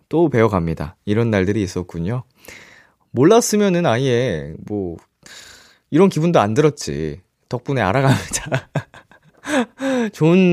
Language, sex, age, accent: Korean, male, 20-39, native